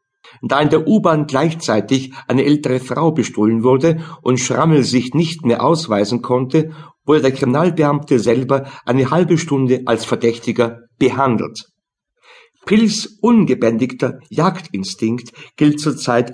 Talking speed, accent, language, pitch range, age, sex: 120 wpm, German, German, 115-155 Hz, 50-69, male